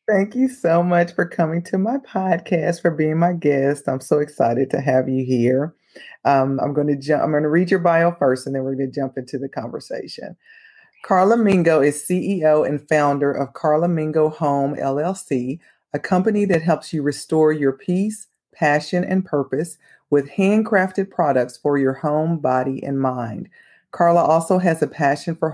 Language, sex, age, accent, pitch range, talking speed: English, female, 40-59, American, 140-175 Hz, 185 wpm